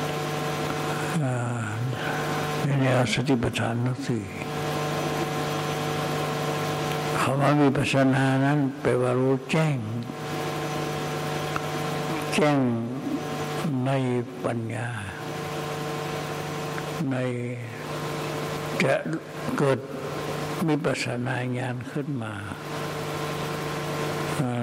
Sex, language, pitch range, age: male, Thai, 125-150 Hz, 60-79